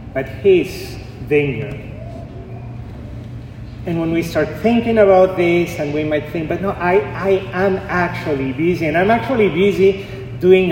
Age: 40-59